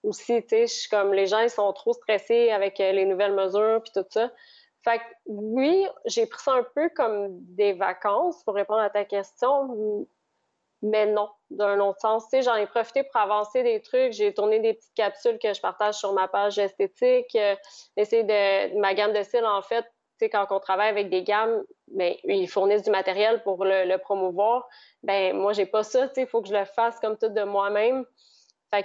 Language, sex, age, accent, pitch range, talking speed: French, female, 30-49, Canadian, 195-235 Hz, 210 wpm